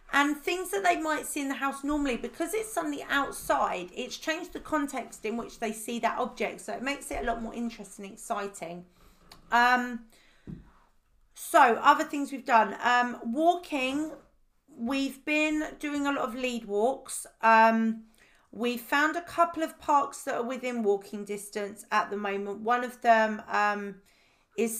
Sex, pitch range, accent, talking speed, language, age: female, 210-270 Hz, British, 170 wpm, English, 40-59